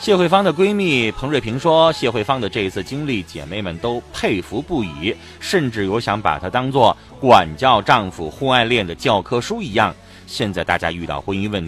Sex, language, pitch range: male, Chinese, 80-120 Hz